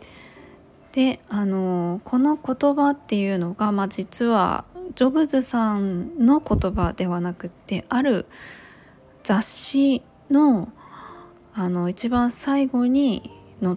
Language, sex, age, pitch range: Japanese, female, 20-39, 180-235 Hz